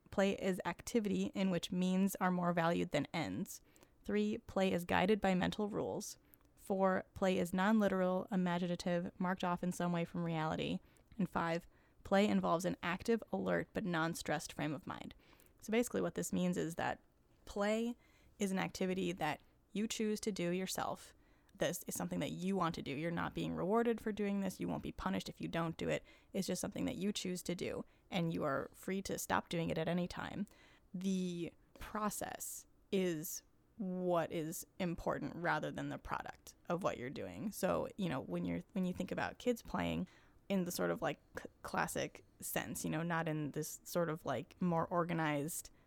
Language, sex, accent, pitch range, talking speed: English, female, American, 165-195 Hz, 190 wpm